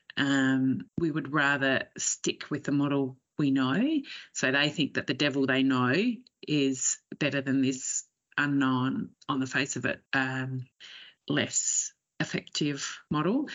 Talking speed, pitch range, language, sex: 140 wpm, 135-155 Hz, English, female